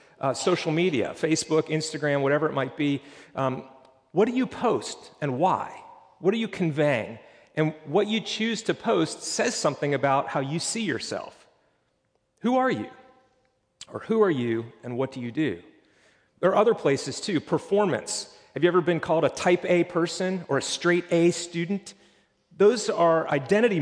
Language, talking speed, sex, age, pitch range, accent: English, 170 wpm, male, 40-59, 145-180 Hz, American